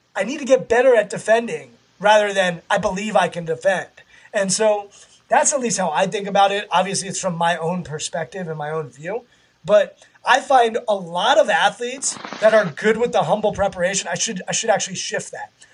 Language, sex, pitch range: English, male, 180-235 Hz